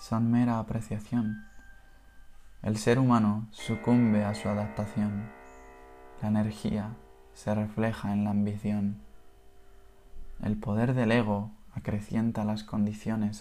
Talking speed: 105 wpm